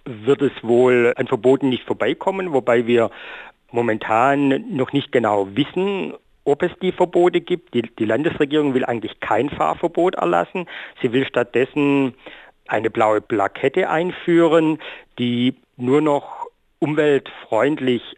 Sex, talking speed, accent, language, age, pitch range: male, 125 wpm, German, German, 50-69, 120-145 Hz